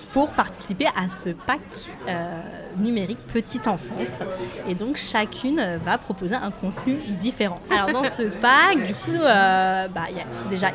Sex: female